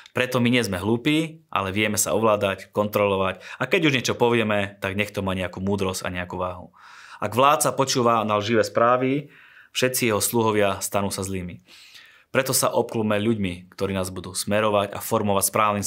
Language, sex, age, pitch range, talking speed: Slovak, male, 20-39, 95-120 Hz, 180 wpm